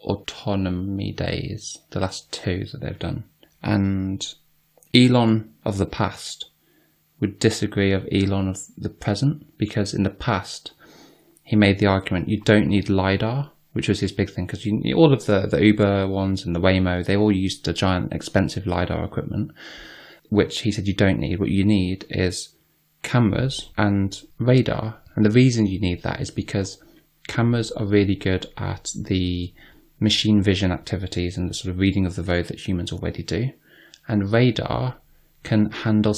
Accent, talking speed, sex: British, 170 wpm, male